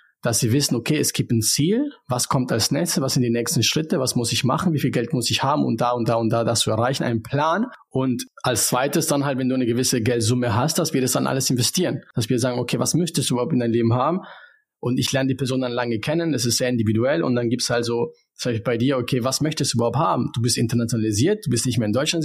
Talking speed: 275 wpm